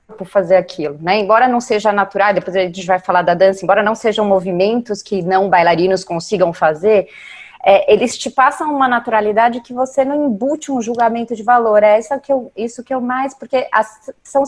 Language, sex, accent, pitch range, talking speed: Portuguese, female, Brazilian, 205-270 Hz, 205 wpm